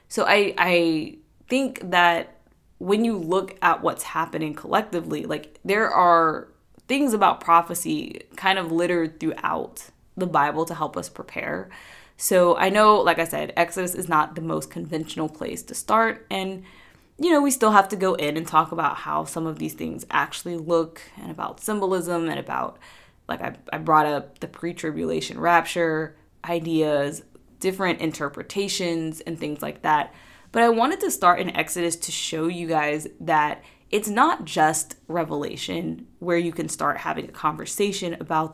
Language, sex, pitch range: English, female, 155-185 Hz